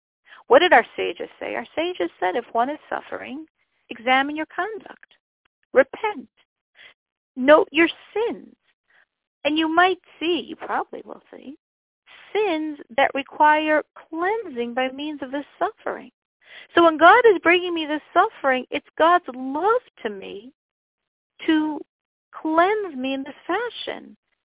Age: 50-69